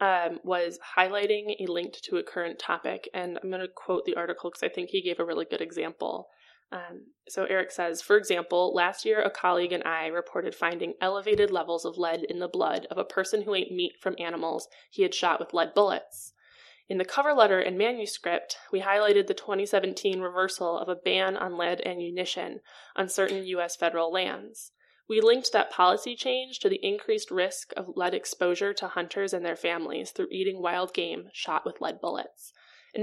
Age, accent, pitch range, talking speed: 10-29, American, 175-260 Hz, 195 wpm